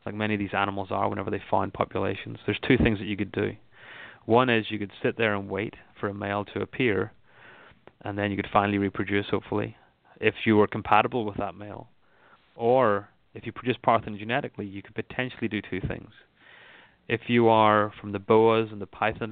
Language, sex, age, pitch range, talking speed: English, male, 30-49, 100-110 Hz, 200 wpm